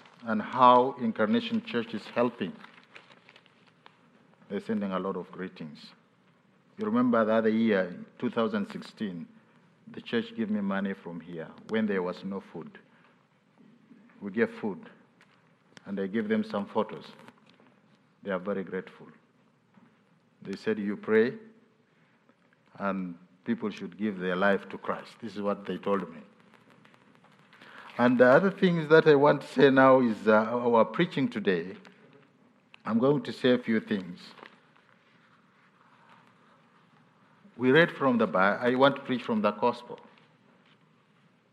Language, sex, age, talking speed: English, male, 50-69, 135 wpm